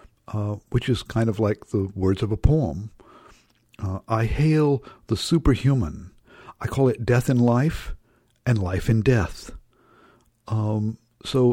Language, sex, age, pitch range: English, male, 60-79, 105-125 Hz